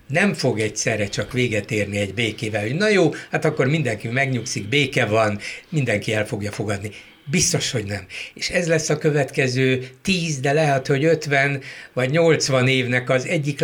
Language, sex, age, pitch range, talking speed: Hungarian, male, 60-79, 115-145 Hz, 170 wpm